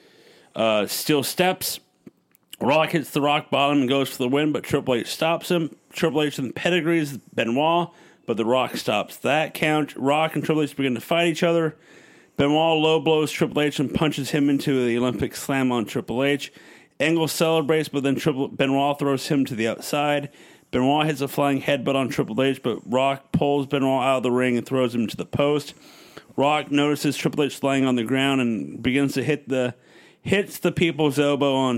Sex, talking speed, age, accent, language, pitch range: male, 200 wpm, 40-59, American, English, 130-155 Hz